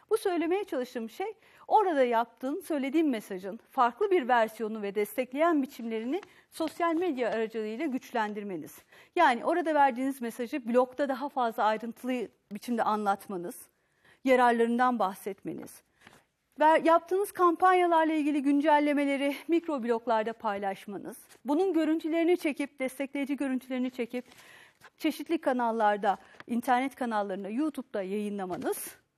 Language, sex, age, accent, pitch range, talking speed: Turkish, female, 40-59, native, 235-320 Hz, 100 wpm